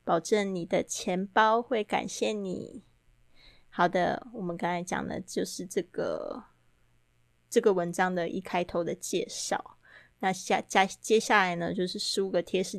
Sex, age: female, 20-39